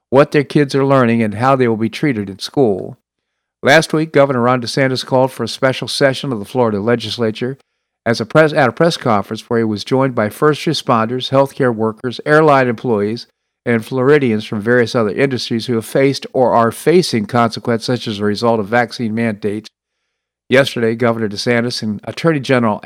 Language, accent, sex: English, American, male